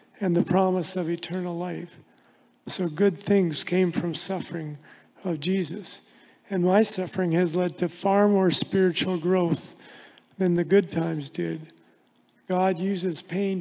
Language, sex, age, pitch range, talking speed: English, male, 40-59, 175-195 Hz, 140 wpm